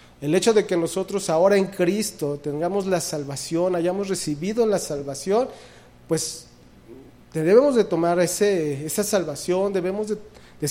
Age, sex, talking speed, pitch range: 40-59, male, 135 wpm, 155-195 Hz